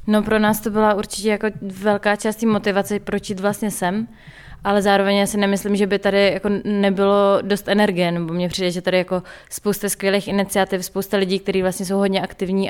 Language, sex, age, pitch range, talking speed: Czech, female, 20-39, 185-195 Hz, 185 wpm